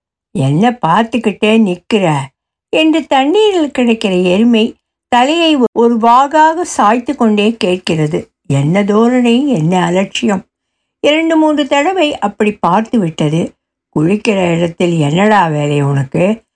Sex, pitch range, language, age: female, 190-255 Hz, Tamil, 60-79